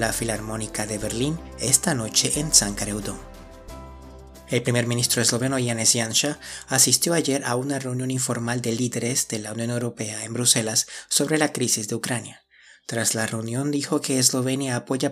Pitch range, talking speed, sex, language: 115-135 Hz, 160 wpm, male, Spanish